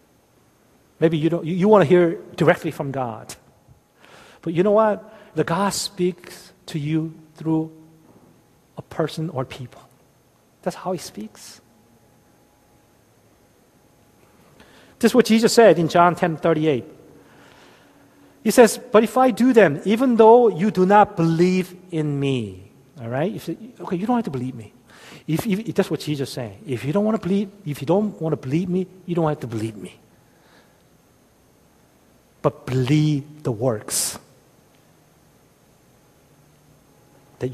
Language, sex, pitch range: Korean, male, 120-185 Hz